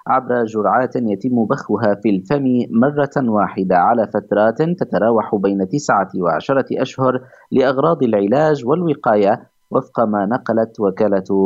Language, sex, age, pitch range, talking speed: Arabic, male, 30-49, 100-125 Hz, 115 wpm